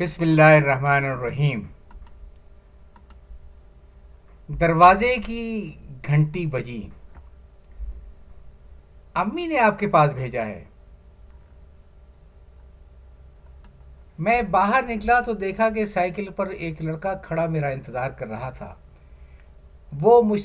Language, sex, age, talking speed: Urdu, male, 60-79, 95 wpm